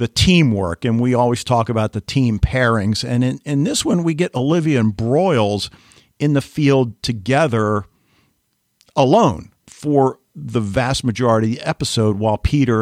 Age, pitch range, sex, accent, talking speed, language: 50-69, 105-135 Hz, male, American, 160 wpm, English